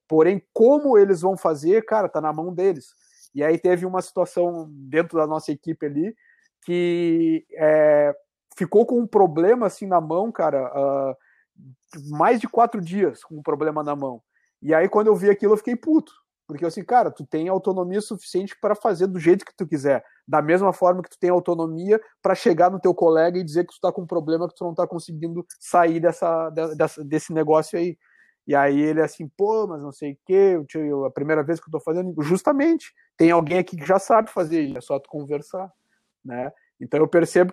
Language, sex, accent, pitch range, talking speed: Portuguese, male, Brazilian, 155-195 Hz, 205 wpm